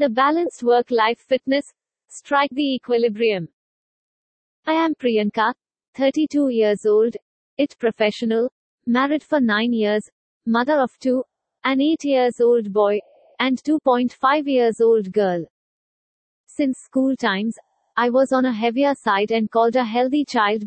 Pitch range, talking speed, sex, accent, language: 225-275 Hz, 135 wpm, female, Indian, English